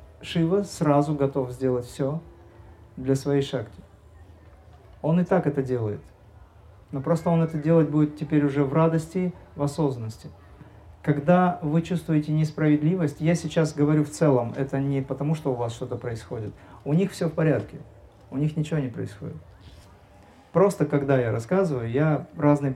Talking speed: 155 wpm